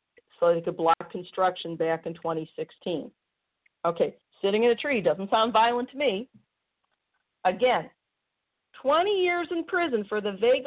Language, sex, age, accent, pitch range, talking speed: English, female, 50-69, American, 175-225 Hz, 145 wpm